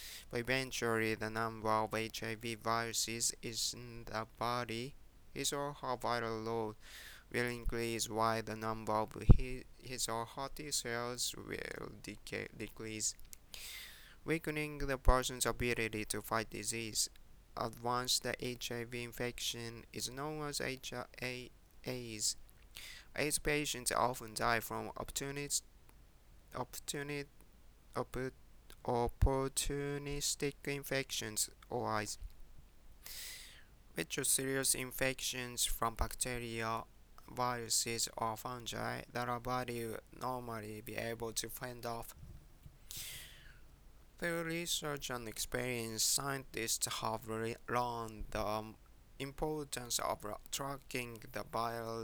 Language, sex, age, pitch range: Japanese, male, 20-39, 110-130 Hz